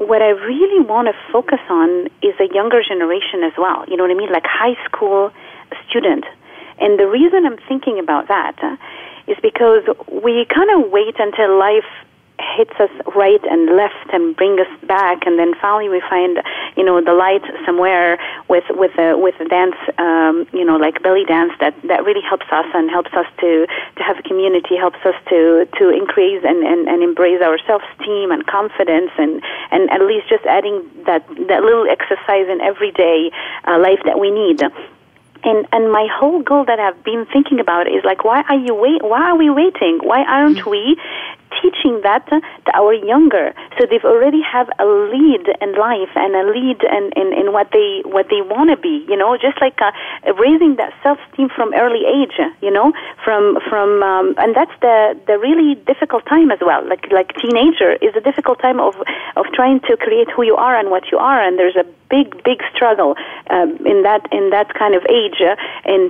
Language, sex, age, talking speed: English, female, 30-49, 200 wpm